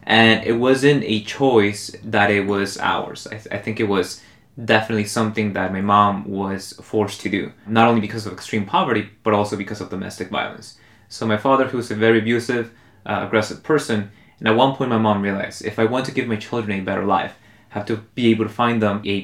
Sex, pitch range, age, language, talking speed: male, 100-110 Hz, 20-39, English, 230 wpm